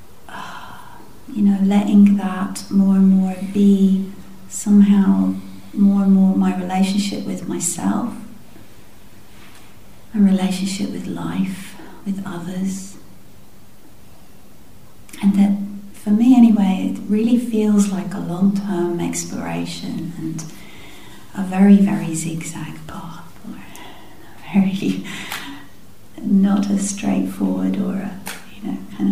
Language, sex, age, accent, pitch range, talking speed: English, female, 40-59, British, 165-200 Hz, 105 wpm